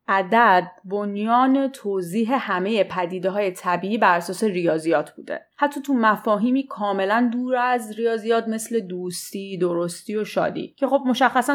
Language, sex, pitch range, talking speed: Persian, female, 180-240 Hz, 130 wpm